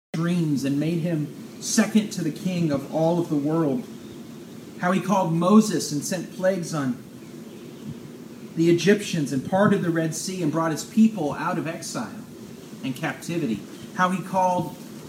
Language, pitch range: English, 150-215 Hz